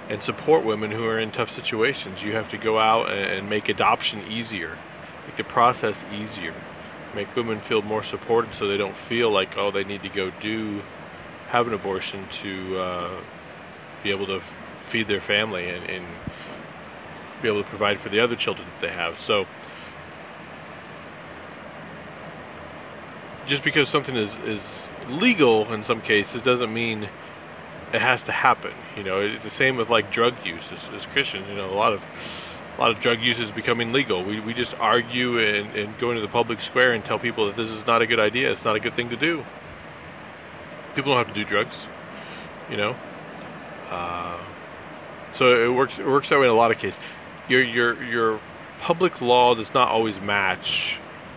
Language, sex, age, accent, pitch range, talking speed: English, male, 20-39, American, 100-120 Hz, 185 wpm